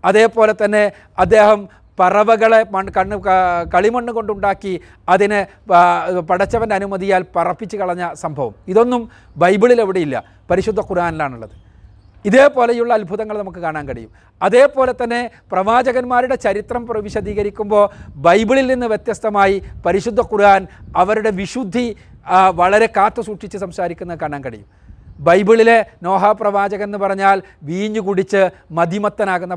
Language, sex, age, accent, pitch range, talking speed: Malayalam, male, 40-59, native, 170-220 Hz, 100 wpm